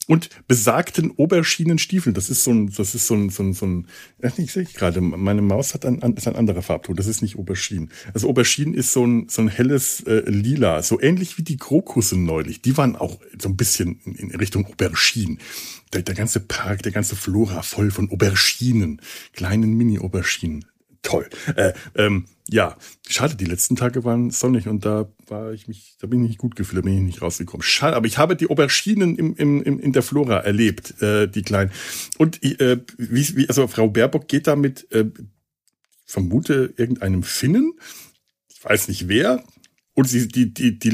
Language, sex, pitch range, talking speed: German, male, 100-135 Hz, 200 wpm